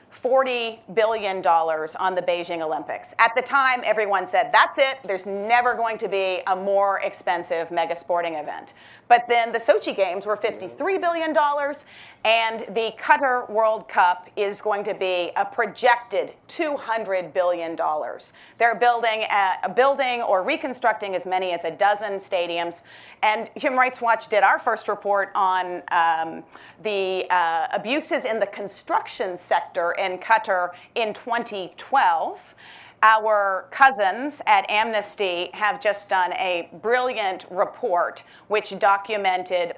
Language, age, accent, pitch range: English, 40-59, American, 185-235 Hz